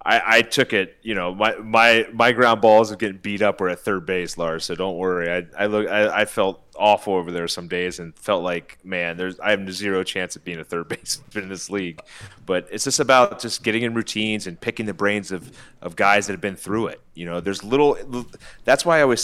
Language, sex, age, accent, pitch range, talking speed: English, male, 30-49, American, 95-125 Hz, 245 wpm